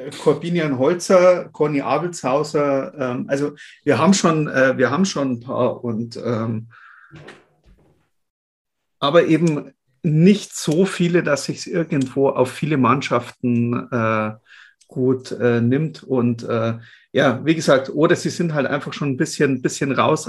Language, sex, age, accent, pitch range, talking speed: German, male, 40-59, German, 125-160 Hz, 145 wpm